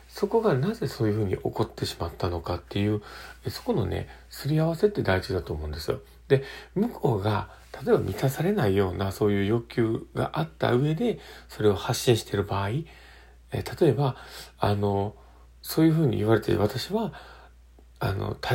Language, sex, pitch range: Japanese, male, 95-145 Hz